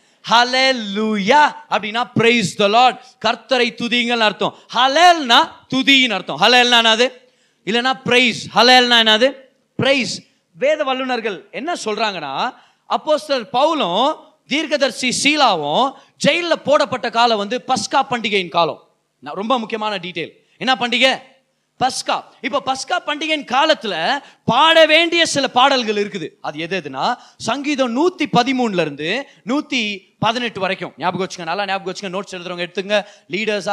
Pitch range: 200-270 Hz